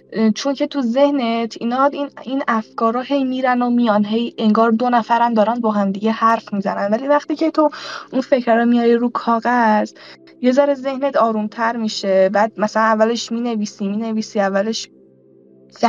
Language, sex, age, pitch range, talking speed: Persian, female, 10-29, 205-260 Hz, 160 wpm